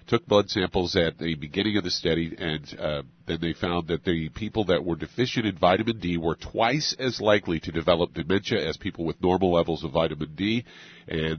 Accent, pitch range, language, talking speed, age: American, 85-105 Hz, English, 205 wpm, 50-69